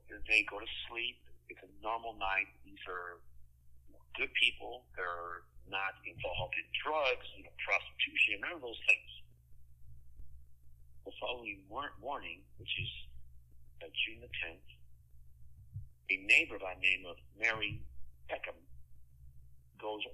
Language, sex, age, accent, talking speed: English, male, 50-69, American, 120 wpm